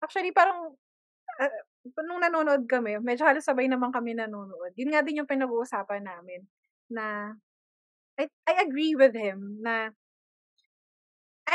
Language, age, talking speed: Filipino, 20-39, 130 wpm